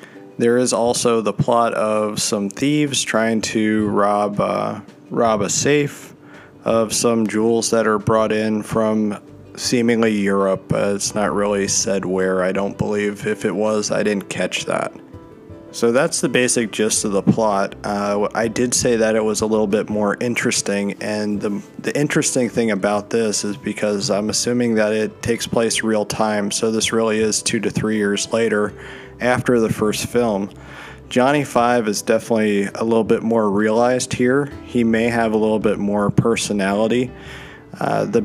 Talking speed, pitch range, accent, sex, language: 175 wpm, 105-120 Hz, American, male, English